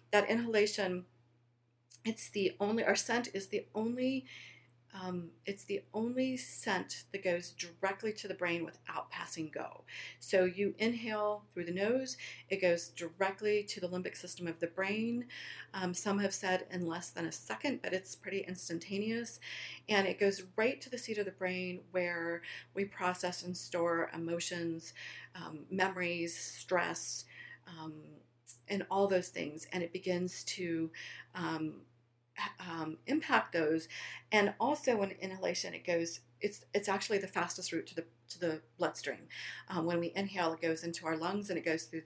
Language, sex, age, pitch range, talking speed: English, female, 40-59, 165-200 Hz, 165 wpm